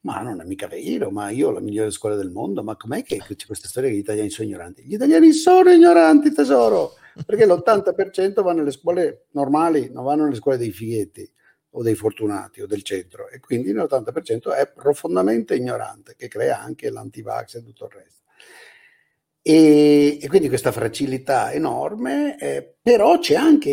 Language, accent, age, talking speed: Italian, native, 50-69, 180 wpm